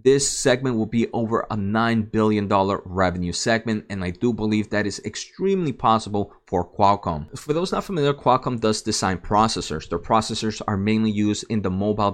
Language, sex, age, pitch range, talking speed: English, male, 30-49, 105-130 Hz, 185 wpm